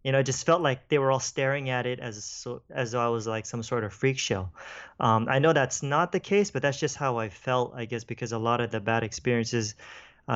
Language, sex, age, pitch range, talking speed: English, male, 20-39, 110-125 Hz, 270 wpm